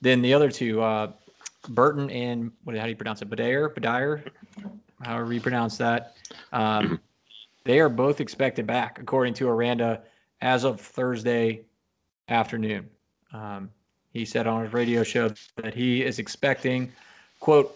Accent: American